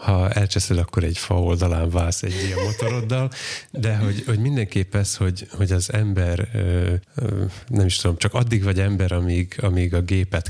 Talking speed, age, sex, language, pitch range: 170 wpm, 30-49, male, Hungarian, 90-105 Hz